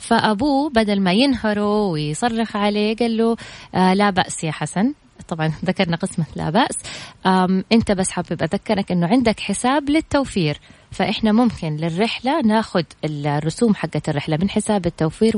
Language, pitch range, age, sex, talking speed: Arabic, 170-215 Hz, 20-39, female, 145 wpm